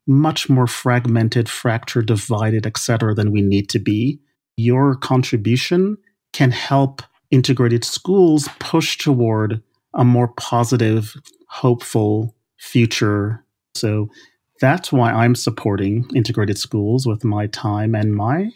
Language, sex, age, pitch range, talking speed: English, male, 40-59, 110-135 Hz, 120 wpm